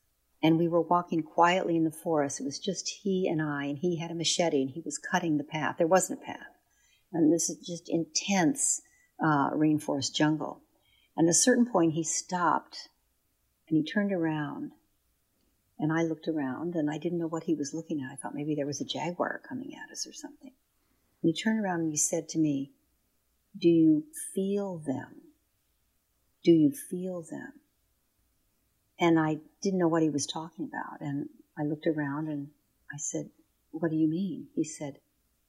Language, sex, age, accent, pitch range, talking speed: English, female, 50-69, American, 150-185 Hz, 190 wpm